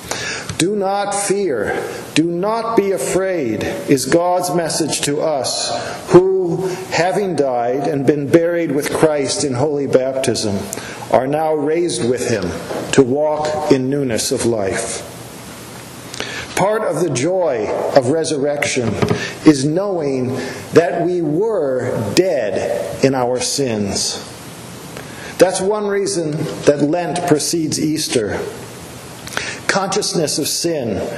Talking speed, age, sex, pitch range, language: 115 wpm, 50-69, male, 130-175 Hz, English